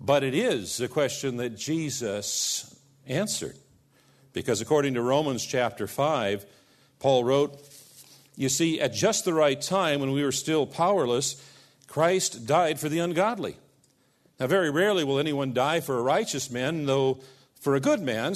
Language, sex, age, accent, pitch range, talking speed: English, male, 50-69, American, 130-155 Hz, 155 wpm